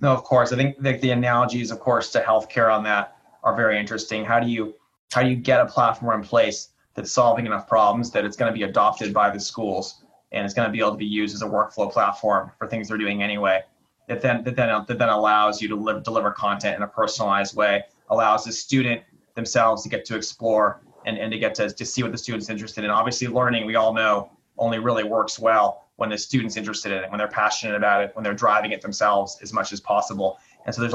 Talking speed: 245 wpm